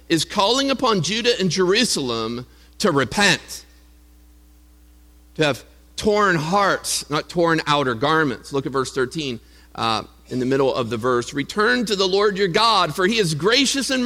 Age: 50-69